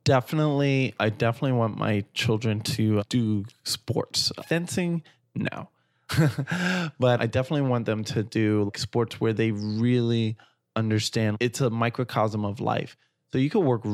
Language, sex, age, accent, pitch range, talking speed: English, male, 20-39, American, 105-125 Hz, 140 wpm